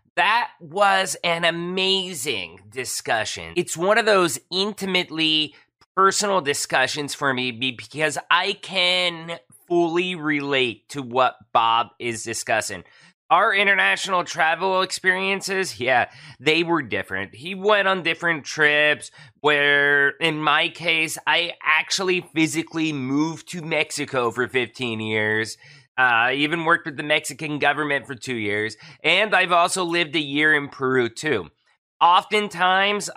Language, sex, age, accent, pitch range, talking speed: English, male, 30-49, American, 125-170 Hz, 125 wpm